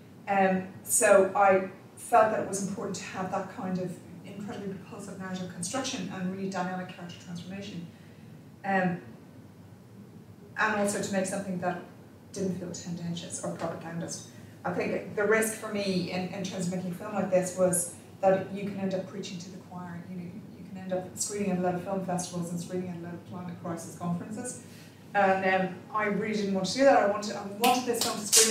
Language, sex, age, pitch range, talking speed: English, female, 30-49, 185-205 Hz, 205 wpm